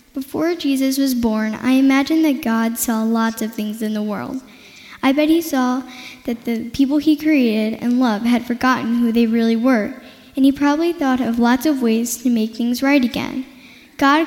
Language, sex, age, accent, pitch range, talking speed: English, female, 10-29, American, 230-275 Hz, 195 wpm